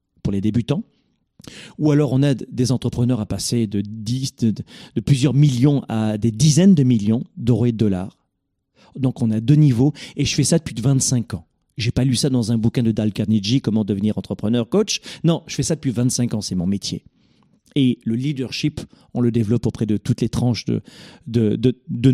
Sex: male